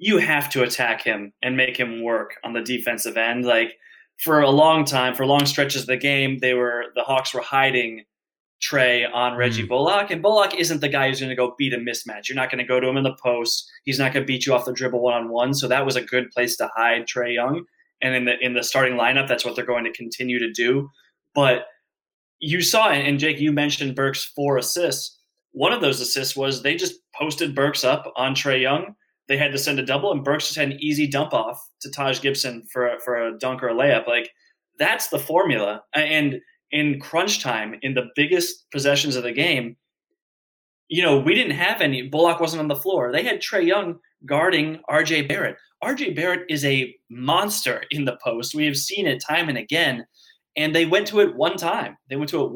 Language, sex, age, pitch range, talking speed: English, male, 20-39, 125-150 Hz, 225 wpm